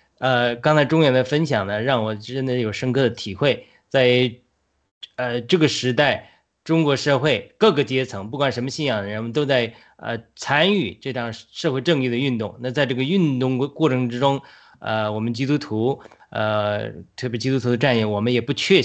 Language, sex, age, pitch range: Chinese, male, 20-39, 110-135 Hz